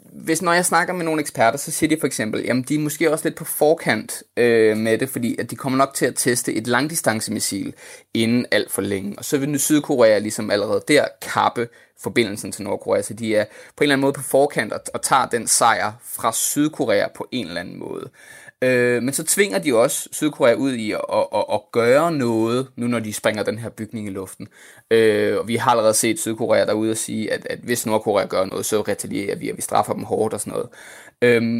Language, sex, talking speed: Danish, male, 235 wpm